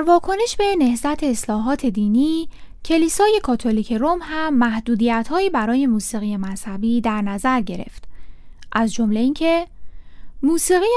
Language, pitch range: Persian, 210-305 Hz